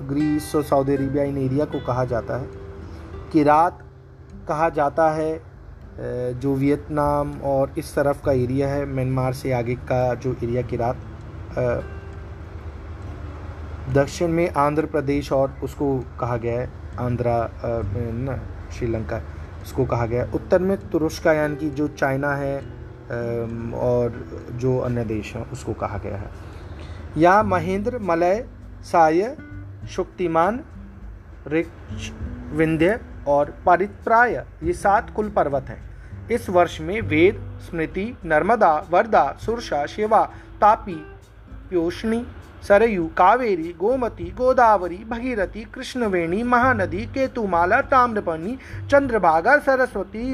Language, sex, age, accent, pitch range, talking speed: Hindi, male, 30-49, native, 110-185 Hz, 115 wpm